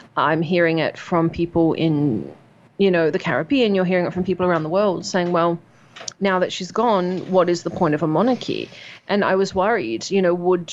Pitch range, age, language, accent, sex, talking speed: 175-200 Hz, 30-49, English, Australian, female, 215 wpm